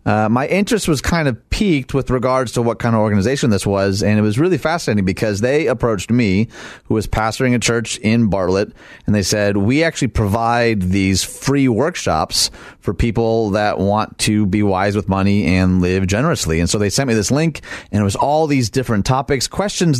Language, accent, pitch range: English, American, 100-130 Hz